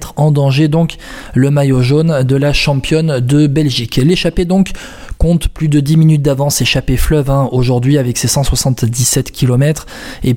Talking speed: 160 wpm